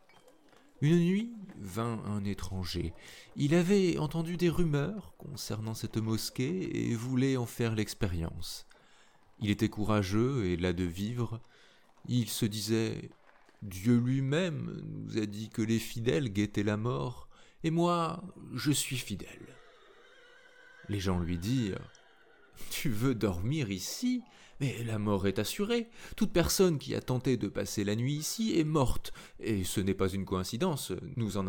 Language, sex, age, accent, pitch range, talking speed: French, male, 30-49, French, 100-150 Hz, 145 wpm